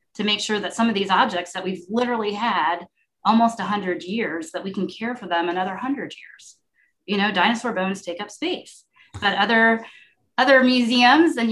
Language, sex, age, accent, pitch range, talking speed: English, female, 30-49, American, 180-225 Hz, 195 wpm